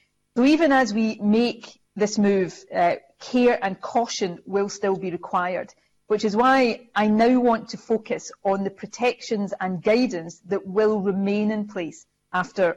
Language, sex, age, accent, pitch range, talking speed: English, female, 40-59, British, 185-225 Hz, 160 wpm